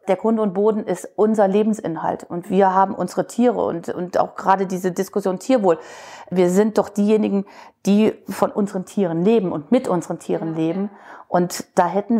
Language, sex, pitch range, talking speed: German, female, 195-240 Hz, 175 wpm